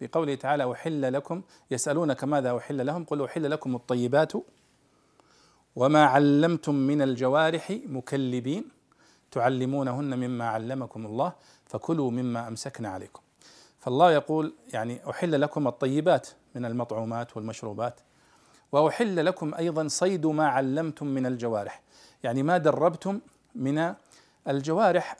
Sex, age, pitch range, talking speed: male, 40-59, 130-165 Hz, 115 wpm